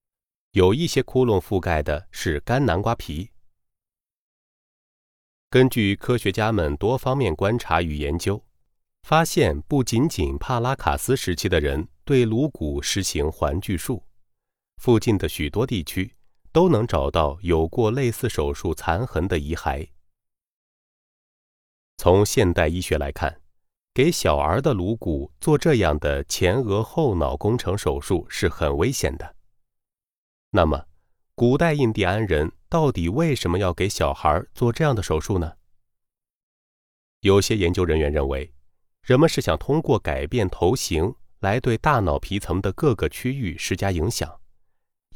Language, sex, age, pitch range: Chinese, male, 30-49, 80-120 Hz